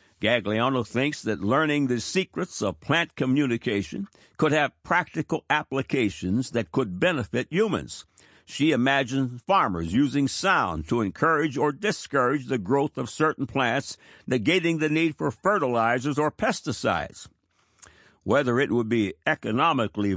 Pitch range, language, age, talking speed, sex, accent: 95-140 Hz, English, 60-79, 130 wpm, male, American